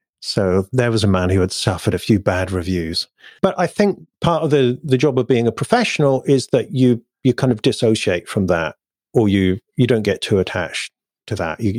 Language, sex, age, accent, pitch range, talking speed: English, male, 40-59, British, 100-130 Hz, 220 wpm